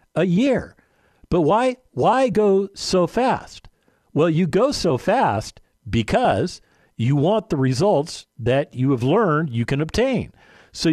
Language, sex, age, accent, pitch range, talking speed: English, male, 50-69, American, 125-185 Hz, 145 wpm